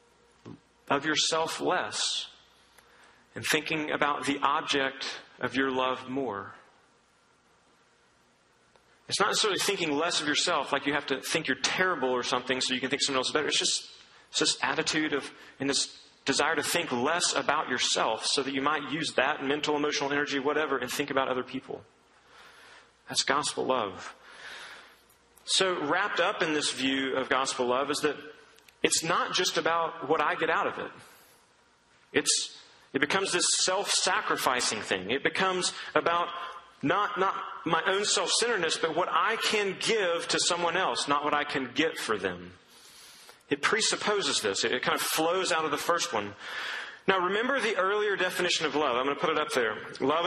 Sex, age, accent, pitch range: male, 40-59, American, 135-170 Hz